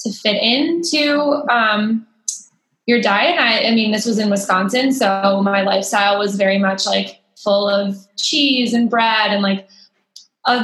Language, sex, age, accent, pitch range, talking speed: English, female, 20-39, American, 200-225 Hz, 160 wpm